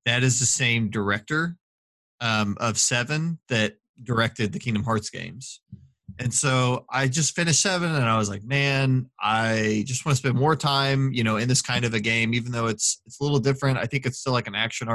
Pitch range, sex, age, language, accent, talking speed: 115-140 Hz, male, 20-39, English, American, 215 wpm